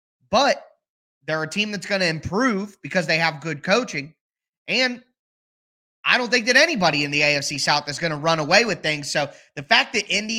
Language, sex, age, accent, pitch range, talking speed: English, male, 20-39, American, 165-215 Hz, 200 wpm